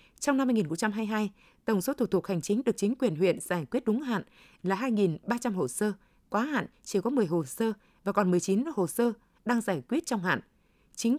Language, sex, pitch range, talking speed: Vietnamese, female, 190-240 Hz, 210 wpm